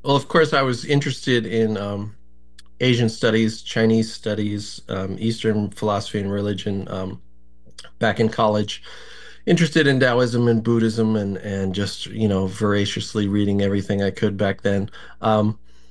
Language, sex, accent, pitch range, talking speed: English, male, American, 100-125 Hz, 145 wpm